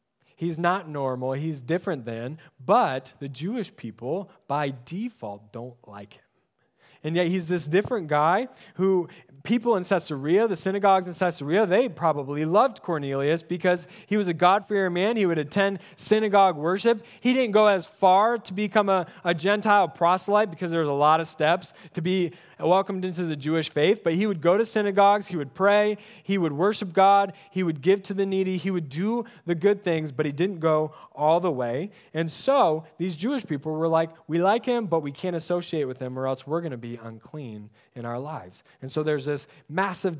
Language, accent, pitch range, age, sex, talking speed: English, American, 150-200 Hz, 20-39, male, 195 wpm